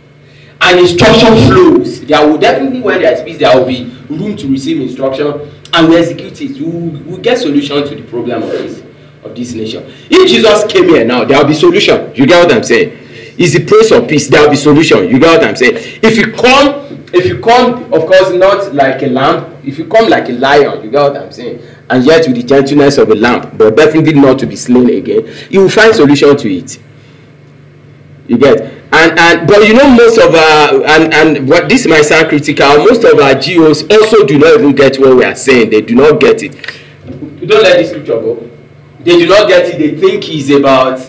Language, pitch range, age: English, 140-235 Hz, 40-59